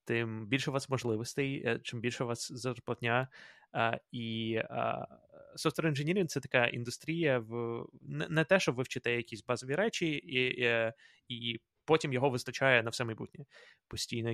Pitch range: 115-140 Hz